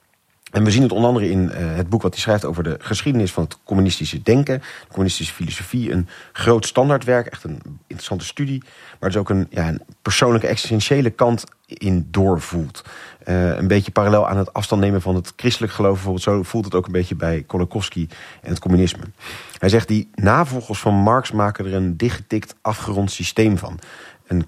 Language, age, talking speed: Dutch, 40-59, 195 wpm